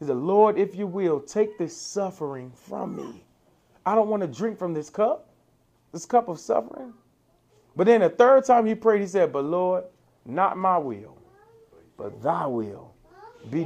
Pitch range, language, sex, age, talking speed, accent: 140-190 Hz, English, male, 30-49, 180 wpm, American